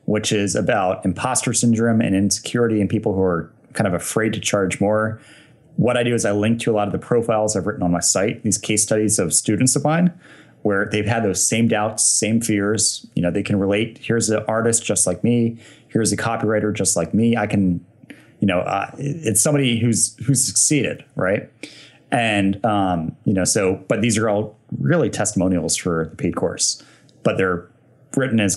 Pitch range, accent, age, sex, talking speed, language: 95-115 Hz, American, 30-49, male, 200 wpm, English